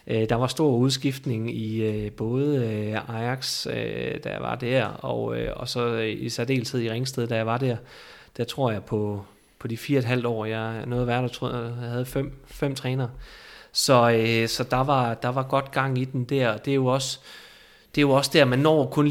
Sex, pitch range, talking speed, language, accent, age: male, 115-135 Hz, 195 wpm, Danish, native, 30-49